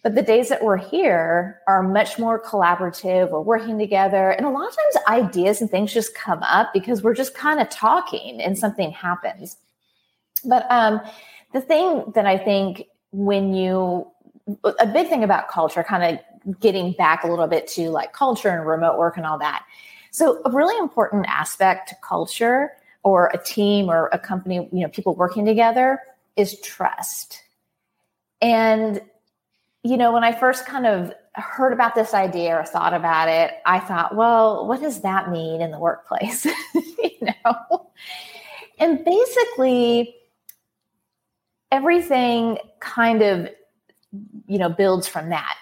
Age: 30-49